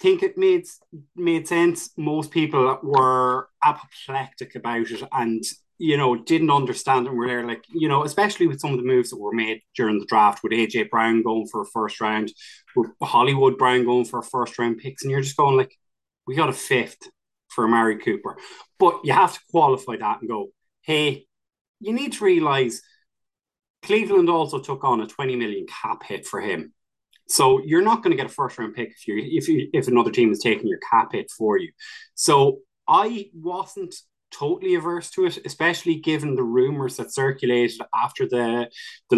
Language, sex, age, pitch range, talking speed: English, male, 20-39, 115-165 Hz, 195 wpm